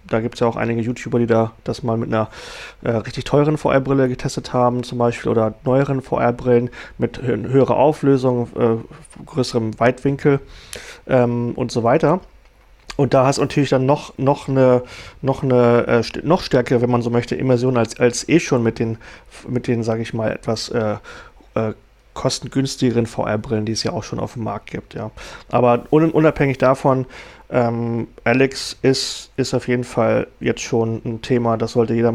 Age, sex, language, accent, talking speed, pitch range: 30-49, male, German, German, 185 wpm, 120-140 Hz